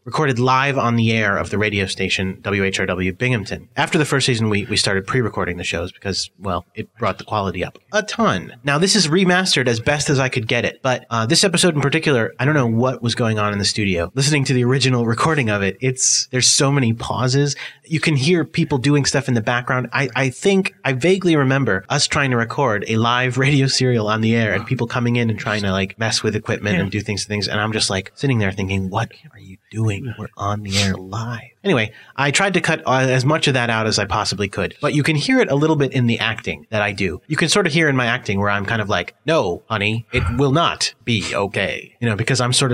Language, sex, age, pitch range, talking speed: English, male, 30-49, 105-140 Hz, 250 wpm